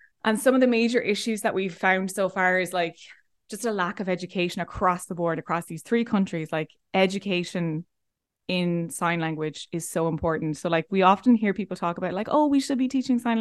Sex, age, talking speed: female, 20-39, 215 wpm